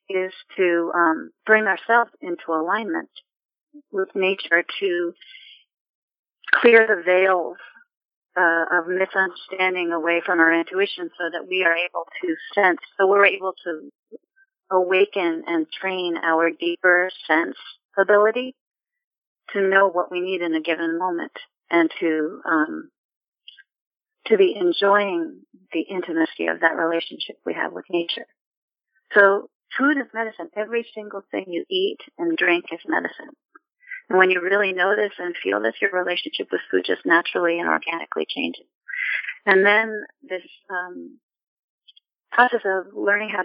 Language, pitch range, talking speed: English, 170-235 Hz, 140 wpm